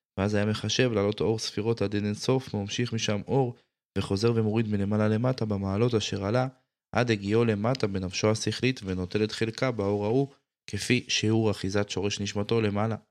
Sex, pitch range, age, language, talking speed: male, 95-110 Hz, 20-39, Hebrew, 155 wpm